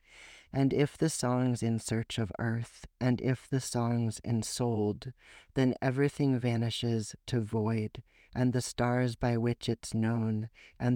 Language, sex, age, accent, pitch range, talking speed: English, male, 40-59, American, 105-125 Hz, 140 wpm